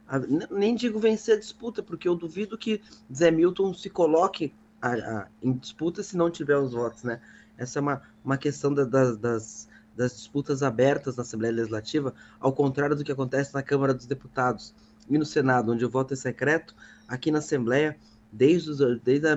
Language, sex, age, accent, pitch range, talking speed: Portuguese, male, 20-39, Brazilian, 125-155 Hz, 175 wpm